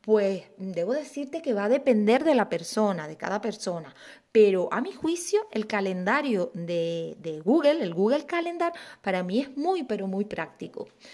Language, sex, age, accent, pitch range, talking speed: Spanish, female, 30-49, Spanish, 185-285 Hz, 170 wpm